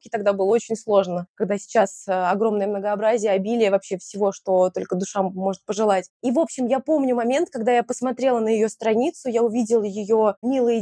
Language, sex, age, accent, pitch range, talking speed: Russian, female, 20-39, native, 210-250 Hz, 175 wpm